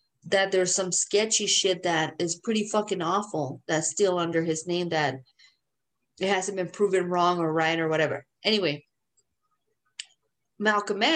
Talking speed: 145 wpm